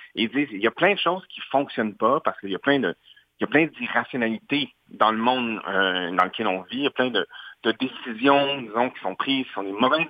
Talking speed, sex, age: 265 wpm, male, 40-59